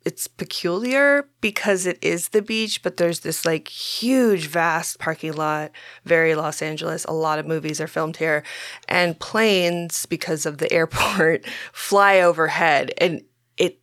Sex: female